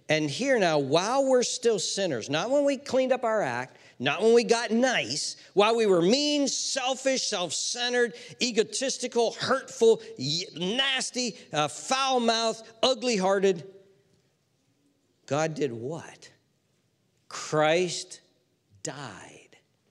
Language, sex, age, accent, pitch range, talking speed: English, male, 50-69, American, 160-260 Hz, 110 wpm